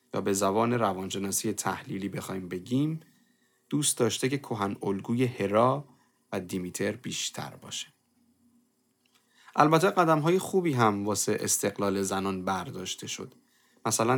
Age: 30-49